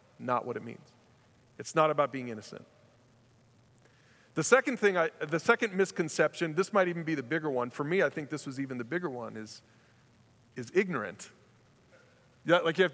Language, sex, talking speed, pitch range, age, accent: English, male, 185 wpm, 130-190 Hz, 40-59, American